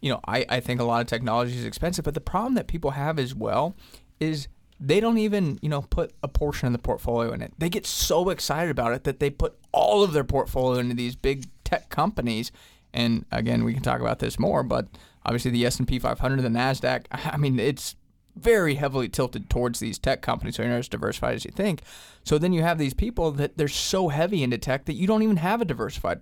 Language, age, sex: English, 20-39, male